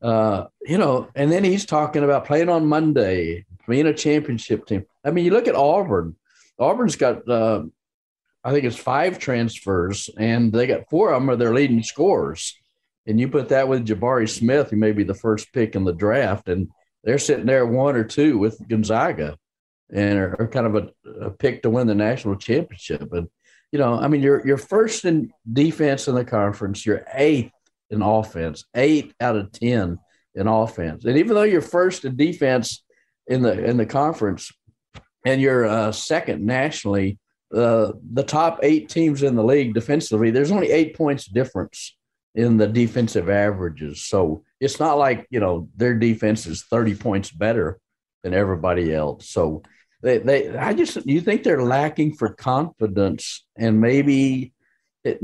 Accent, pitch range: American, 105-140 Hz